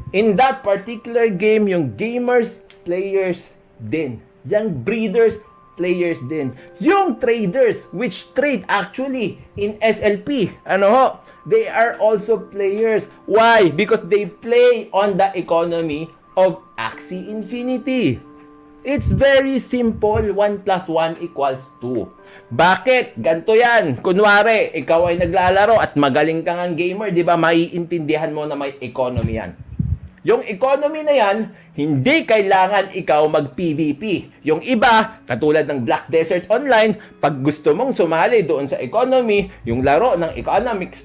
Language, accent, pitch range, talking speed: Filipino, native, 155-225 Hz, 130 wpm